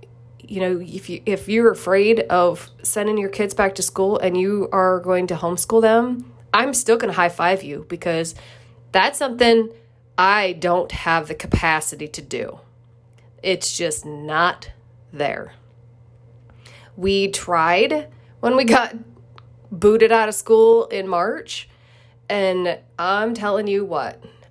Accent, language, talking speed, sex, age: American, English, 140 wpm, female, 30-49